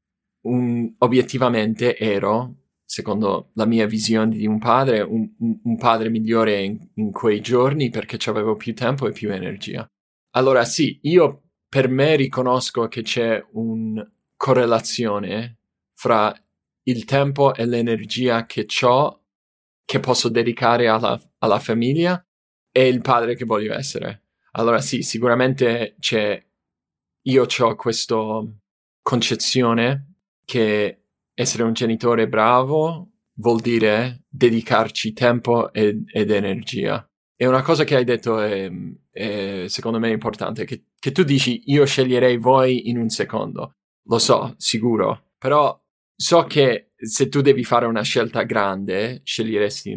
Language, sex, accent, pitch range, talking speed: Italian, male, native, 110-130 Hz, 130 wpm